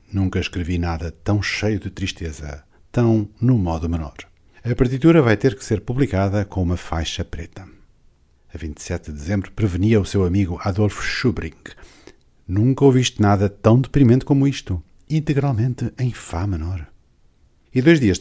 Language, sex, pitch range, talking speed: Portuguese, male, 85-115 Hz, 150 wpm